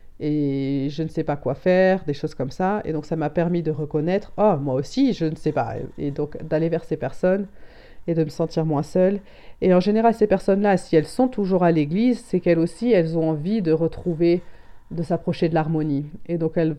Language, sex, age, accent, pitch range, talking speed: French, female, 30-49, French, 155-190 Hz, 230 wpm